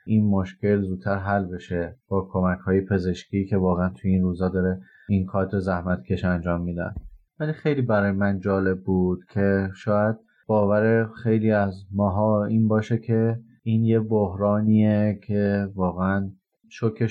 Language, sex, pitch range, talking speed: Persian, male, 95-110 Hz, 145 wpm